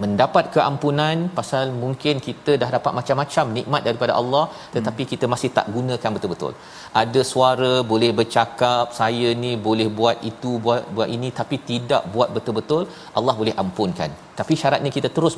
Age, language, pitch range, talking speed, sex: 40-59, Malayalam, 110-135 Hz, 155 wpm, male